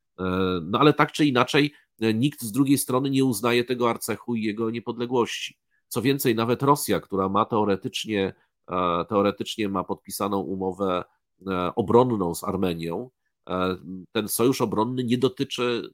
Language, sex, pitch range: Polish, male, 95-120 Hz